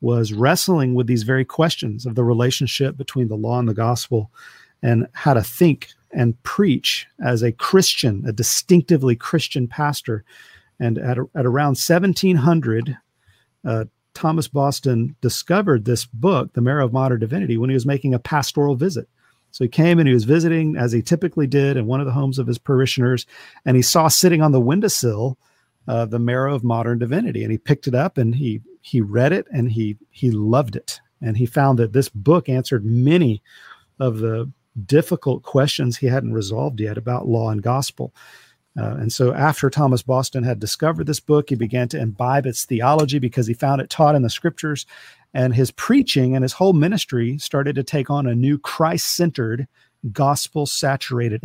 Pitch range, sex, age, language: 120-145 Hz, male, 50-69, English